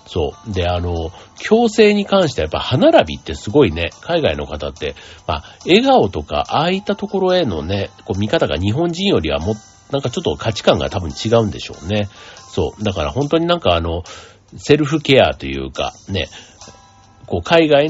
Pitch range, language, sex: 90-145 Hz, Japanese, male